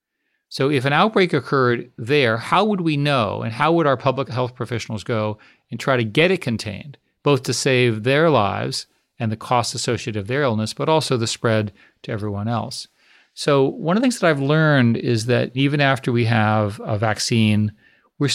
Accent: American